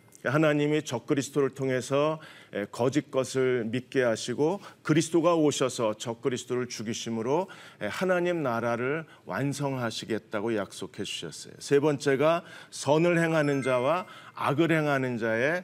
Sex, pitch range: male, 120-160 Hz